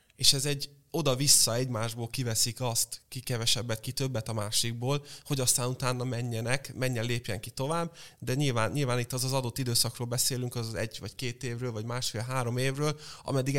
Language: Hungarian